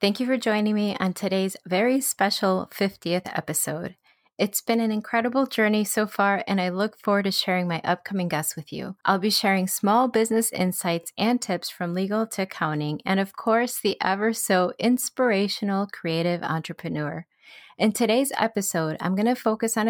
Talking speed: 175 wpm